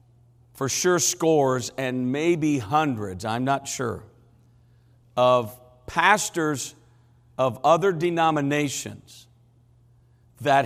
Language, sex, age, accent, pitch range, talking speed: English, male, 50-69, American, 120-150 Hz, 85 wpm